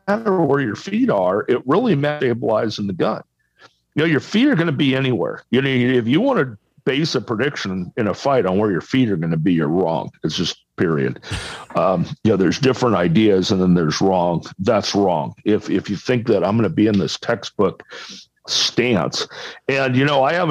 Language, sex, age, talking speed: English, male, 50-69, 220 wpm